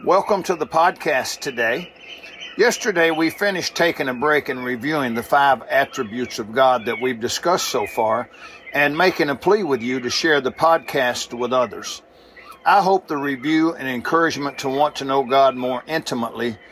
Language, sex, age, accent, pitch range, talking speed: English, male, 60-79, American, 130-160 Hz, 170 wpm